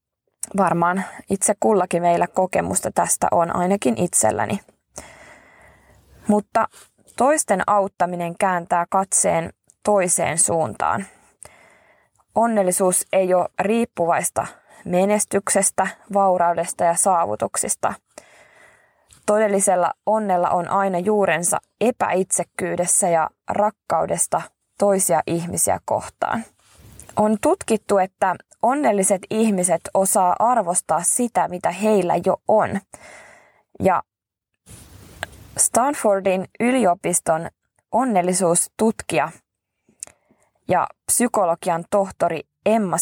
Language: Finnish